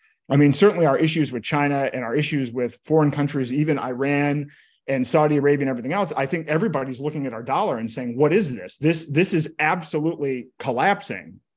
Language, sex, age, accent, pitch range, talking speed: English, male, 30-49, American, 130-150 Hz, 195 wpm